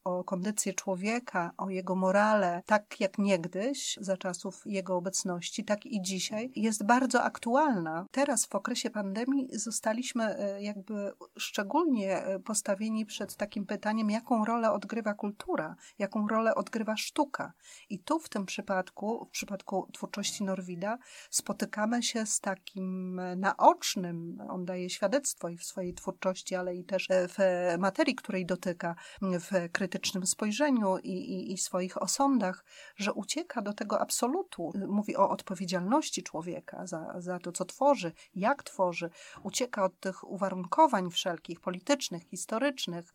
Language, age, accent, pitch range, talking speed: Polish, 30-49, native, 185-220 Hz, 135 wpm